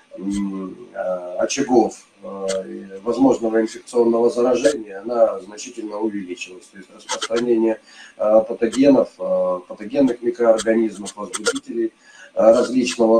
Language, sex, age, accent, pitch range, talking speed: Russian, male, 30-49, native, 105-140 Hz, 70 wpm